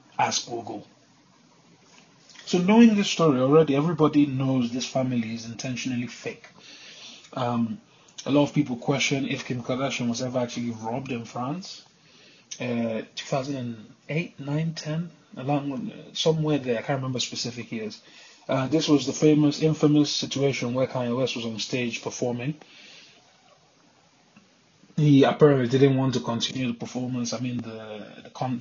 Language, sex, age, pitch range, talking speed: English, male, 20-39, 120-150 Hz, 140 wpm